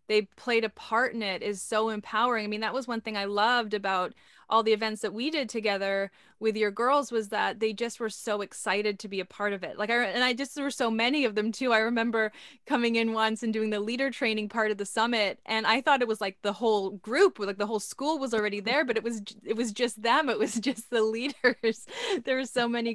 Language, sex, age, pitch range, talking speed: English, female, 20-39, 210-240 Hz, 260 wpm